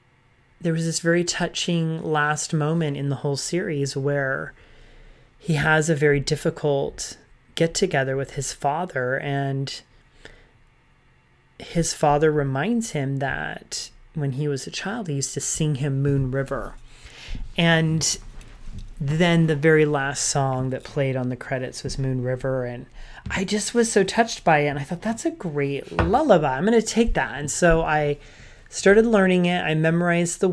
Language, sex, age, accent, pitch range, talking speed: English, male, 30-49, American, 135-160 Hz, 160 wpm